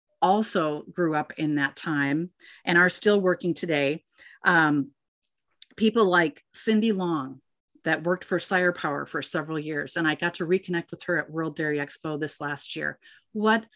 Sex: female